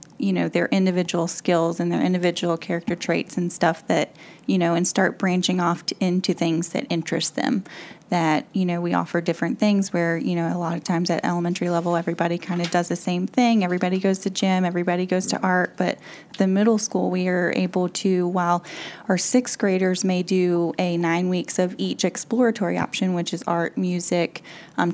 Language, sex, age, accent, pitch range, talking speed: English, female, 10-29, American, 170-195 Hz, 195 wpm